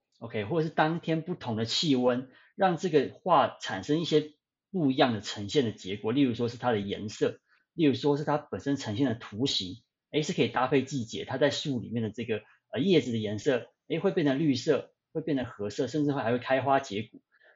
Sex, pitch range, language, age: male, 115-150 Hz, Chinese, 30-49